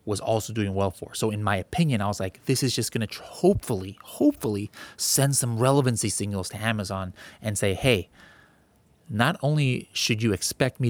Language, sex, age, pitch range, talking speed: English, male, 20-39, 100-130 Hz, 185 wpm